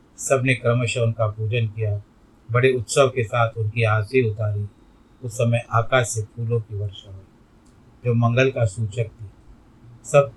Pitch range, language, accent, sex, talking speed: 110-130 Hz, Hindi, native, male, 150 wpm